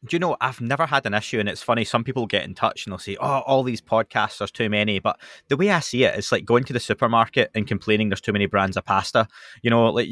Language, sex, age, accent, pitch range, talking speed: English, male, 20-39, British, 100-120 Hz, 290 wpm